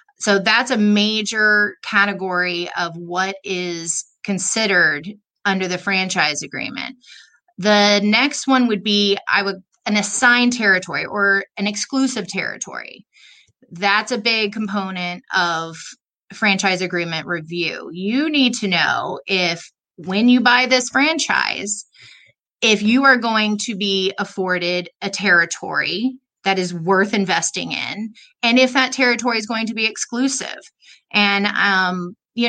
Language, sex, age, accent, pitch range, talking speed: English, female, 30-49, American, 180-220 Hz, 130 wpm